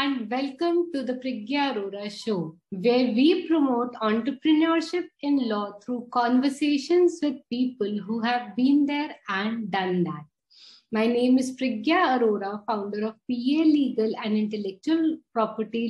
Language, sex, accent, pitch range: English, female, Indian, 215-275 Hz